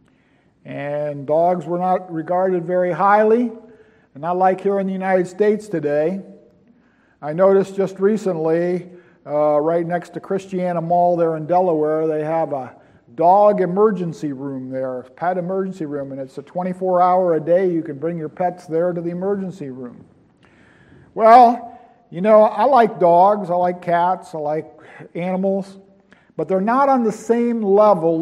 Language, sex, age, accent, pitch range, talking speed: English, male, 50-69, American, 165-210 Hz, 155 wpm